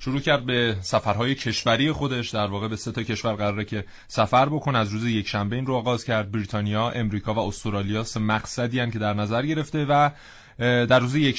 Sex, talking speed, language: male, 200 wpm, Persian